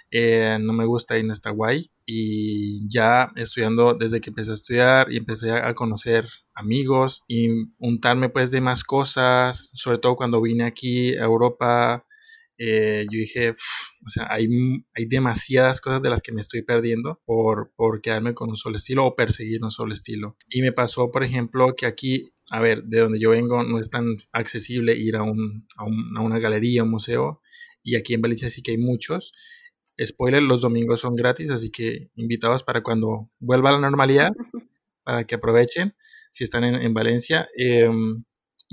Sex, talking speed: male, 185 wpm